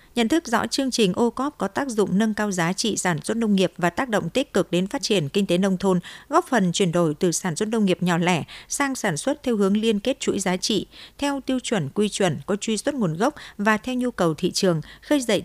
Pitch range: 185-235 Hz